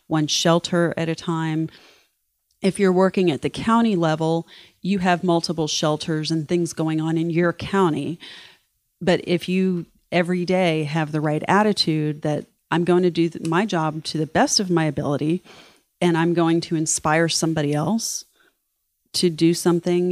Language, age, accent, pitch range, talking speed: English, 30-49, American, 155-180 Hz, 165 wpm